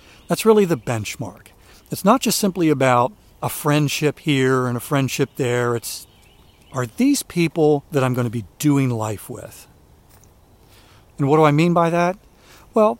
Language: English